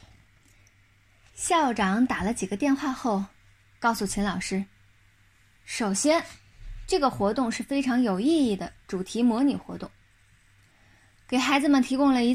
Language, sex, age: Chinese, female, 20-39